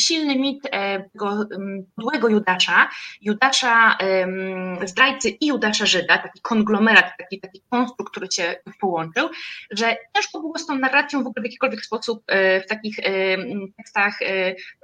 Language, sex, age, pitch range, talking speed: Polish, female, 20-39, 190-260 Hz, 145 wpm